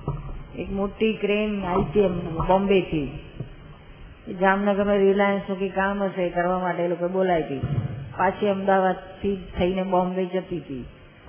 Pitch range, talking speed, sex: 175-210 Hz, 130 wpm, female